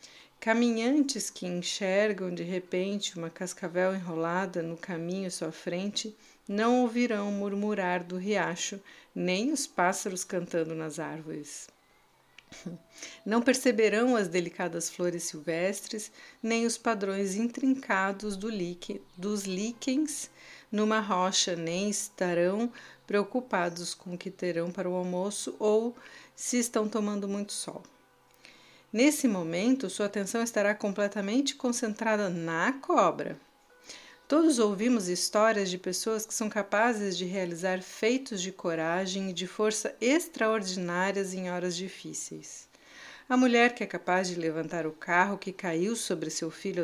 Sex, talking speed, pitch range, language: female, 125 wpm, 180-220 Hz, Portuguese